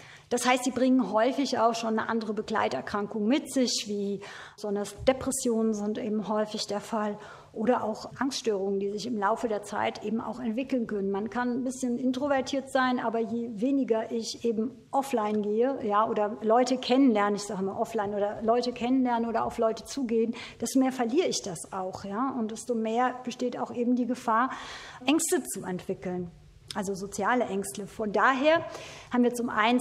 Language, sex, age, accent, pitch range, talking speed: German, female, 50-69, German, 215-250 Hz, 175 wpm